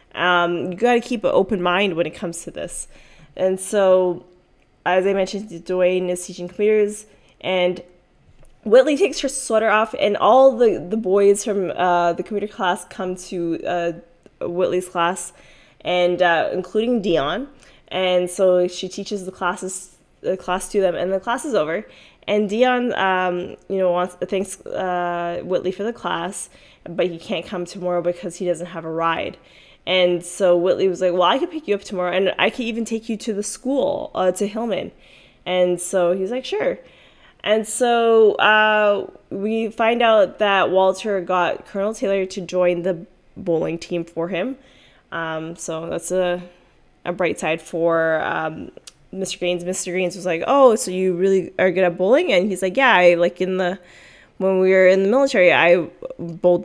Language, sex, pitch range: English, female, 175-210 Hz